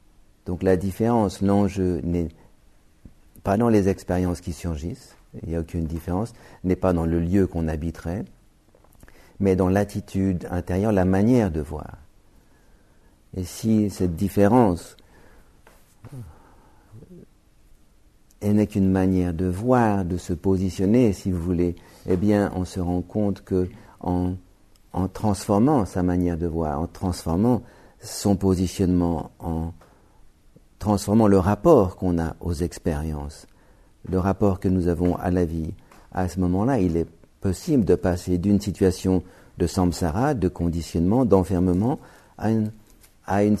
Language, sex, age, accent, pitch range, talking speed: English, male, 50-69, French, 90-105 Hz, 140 wpm